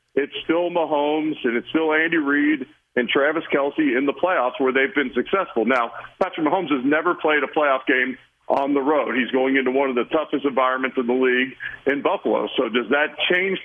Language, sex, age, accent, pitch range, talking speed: English, male, 50-69, American, 125-150 Hz, 205 wpm